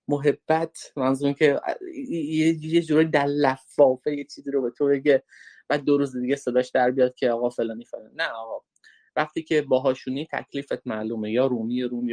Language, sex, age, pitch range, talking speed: Persian, male, 30-49, 125-150 Hz, 175 wpm